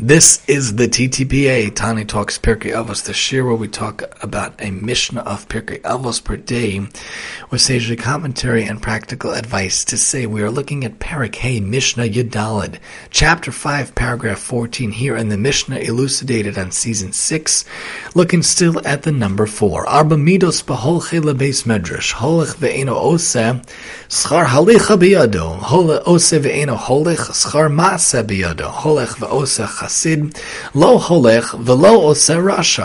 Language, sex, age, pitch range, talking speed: English, male, 40-59, 110-155 Hz, 100 wpm